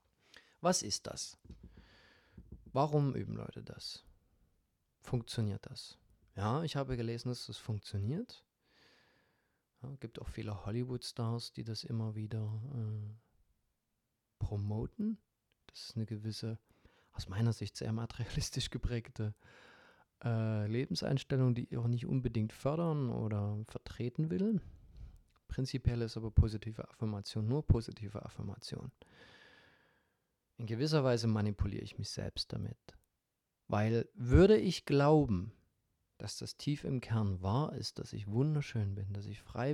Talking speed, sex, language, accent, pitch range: 125 wpm, male, German, German, 105-130 Hz